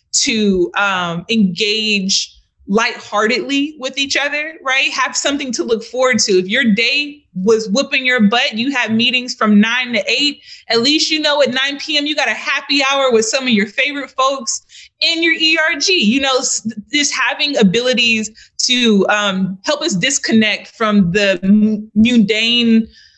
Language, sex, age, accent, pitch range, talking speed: English, female, 20-39, American, 200-250 Hz, 160 wpm